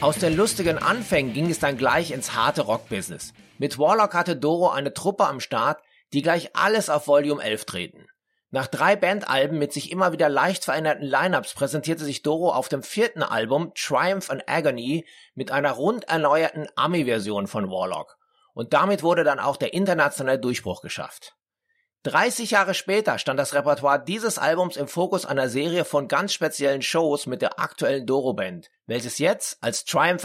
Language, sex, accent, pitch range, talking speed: German, male, German, 140-185 Hz, 170 wpm